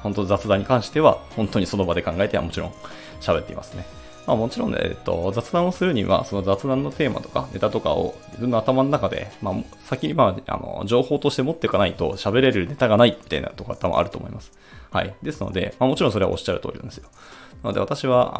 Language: Japanese